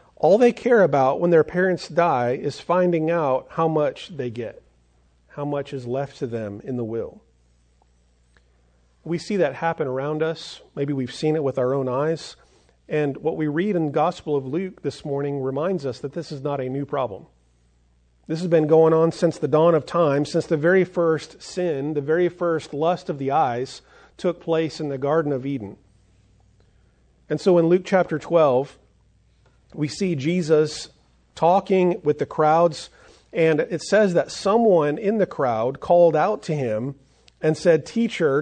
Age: 40-59